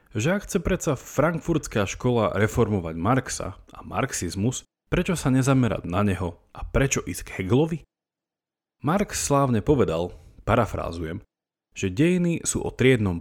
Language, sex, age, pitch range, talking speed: Slovak, male, 30-49, 90-135 Hz, 130 wpm